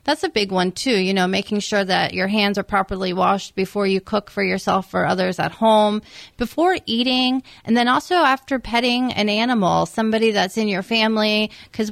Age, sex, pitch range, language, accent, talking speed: 30-49, female, 195-225 Hz, English, American, 195 wpm